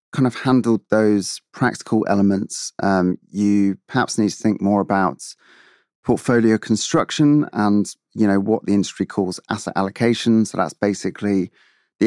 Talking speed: 145 wpm